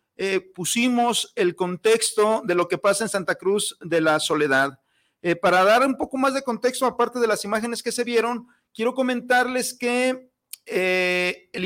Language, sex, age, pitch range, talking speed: Spanish, male, 40-59, 185-250 Hz, 175 wpm